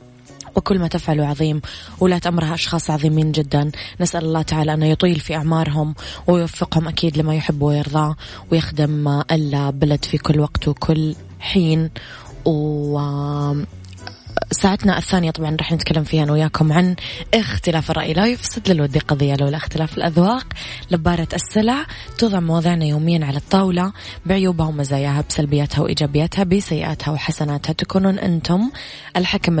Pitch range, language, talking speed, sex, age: 150-180 Hz, Arabic, 130 wpm, female, 20-39